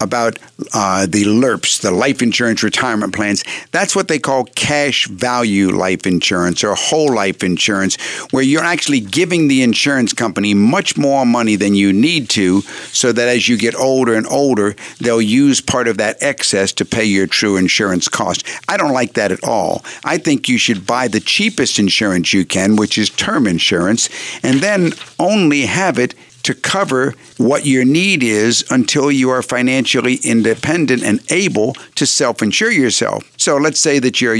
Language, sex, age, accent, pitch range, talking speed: English, male, 50-69, American, 105-135 Hz, 175 wpm